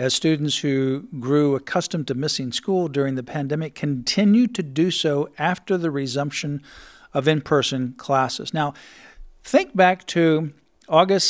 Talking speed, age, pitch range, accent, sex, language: 140 wpm, 50-69, 150-185 Hz, American, male, English